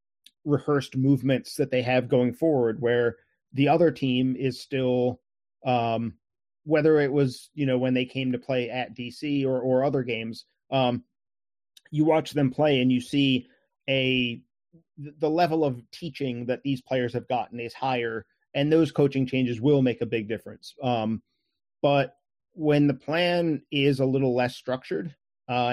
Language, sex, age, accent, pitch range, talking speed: English, male, 30-49, American, 120-140 Hz, 165 wpm